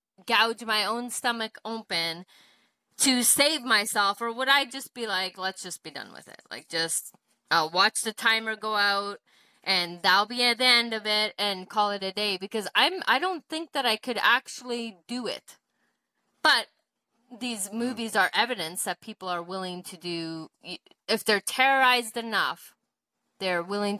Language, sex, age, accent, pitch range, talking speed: English, female, 20-39, American, 185-235 Hz, 170 wpm